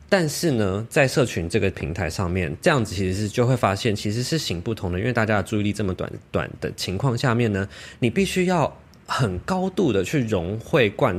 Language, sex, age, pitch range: Chinese, male, 20-39, 95-125 Hz